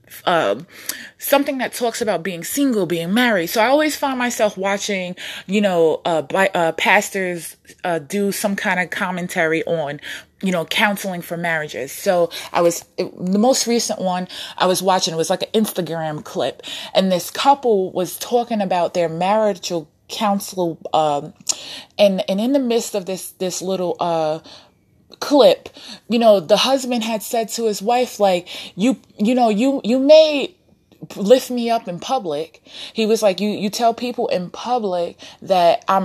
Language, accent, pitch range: English, American, 180-230 Hz